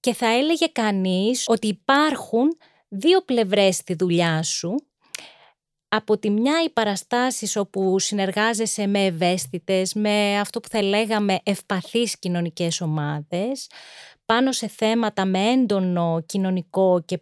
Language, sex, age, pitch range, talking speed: Greek, female, 30-49, 180-240 Hz, 120 wpm